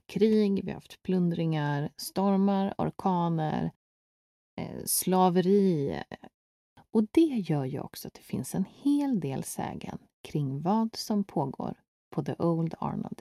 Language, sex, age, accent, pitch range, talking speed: Swedish, female, 30-49, native, 160-210 Hz, 135 wpm